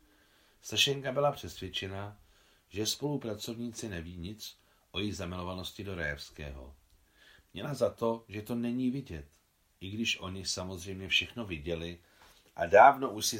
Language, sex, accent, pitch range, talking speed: Czech, male, native, 85-110 Hz, 130 wpm